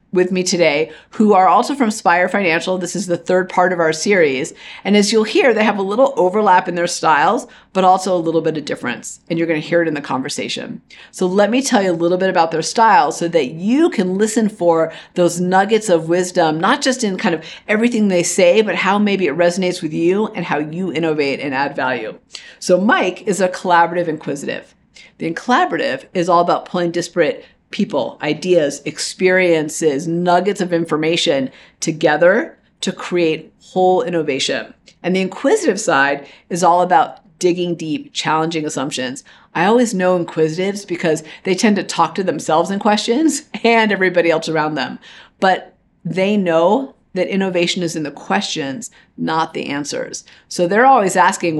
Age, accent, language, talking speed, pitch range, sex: 50-69, American, English, 185 wpm, 165-205 Hz, female